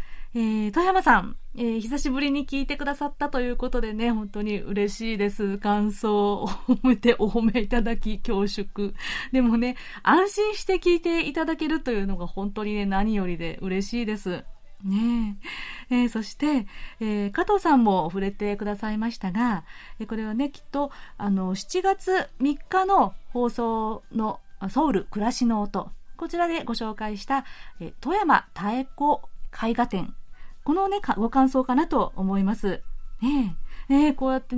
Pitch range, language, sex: 205-280 Hz, Japanese, female